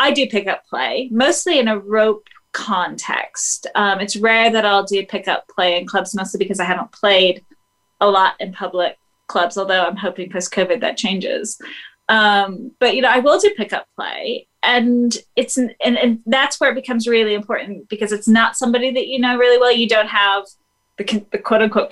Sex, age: female, 20-39